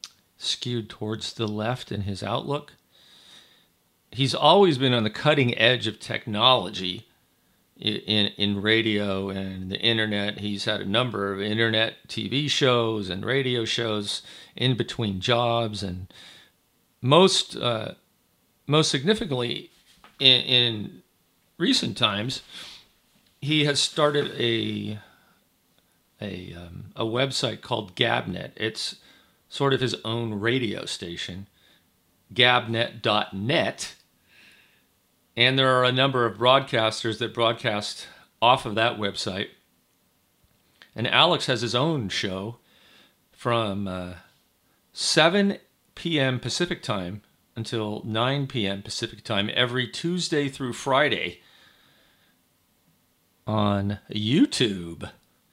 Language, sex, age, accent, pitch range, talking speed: English, male, 40-59, American, 105-130 Hz, 110 wpm